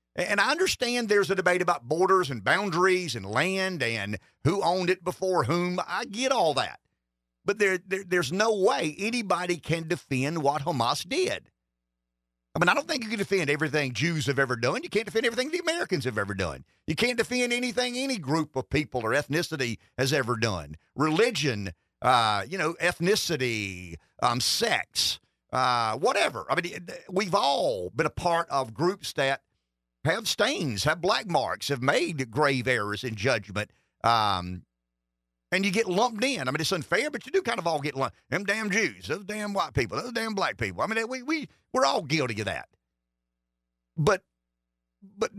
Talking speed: 190 wpm